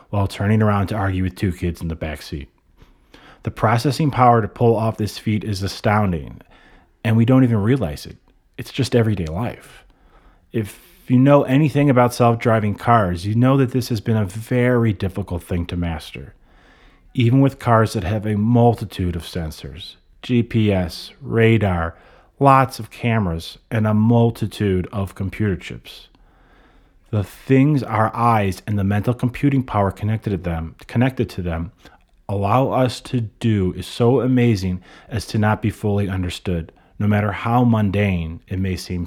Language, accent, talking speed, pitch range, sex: English, American, 160 wpm, 90-120 Hz, male